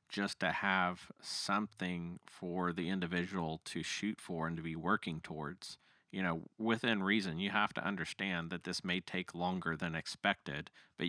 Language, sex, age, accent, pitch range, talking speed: English, male, 40-59, American, 90-100 Hz, 170 wpm